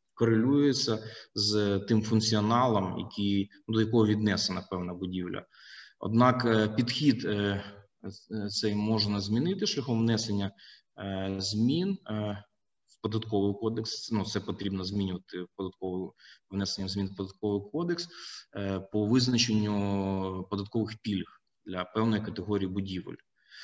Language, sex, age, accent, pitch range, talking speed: Ukrainian, male, 20-39, native, 100-115 Hz, 95 wpm